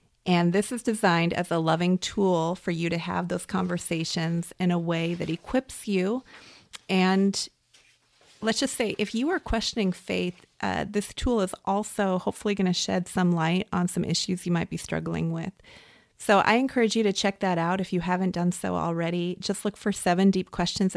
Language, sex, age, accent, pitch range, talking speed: English, female, 30-49, American, 170-195 Hz, 195 wpm